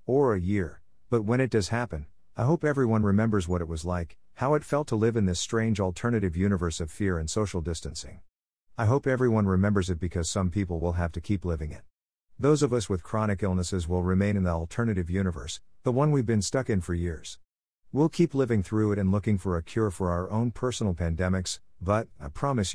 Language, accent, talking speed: English, American, 220 wpm